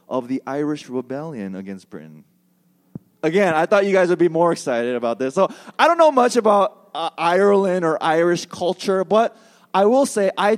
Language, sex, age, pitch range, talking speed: English, male, 20-39, 160-225 Hz, 185 wpm